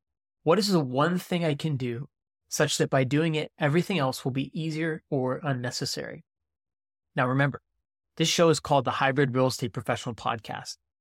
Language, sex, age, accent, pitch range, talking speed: English, male, 20-39, American, 125-155 Hz, 175 wpm